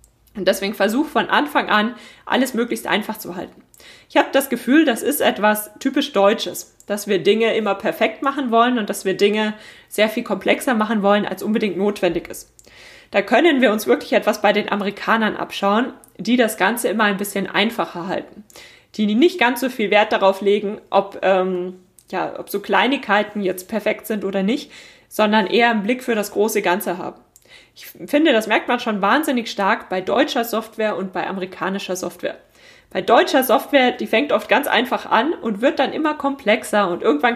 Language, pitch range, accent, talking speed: German, 195-235 Hz, German, 190 wpm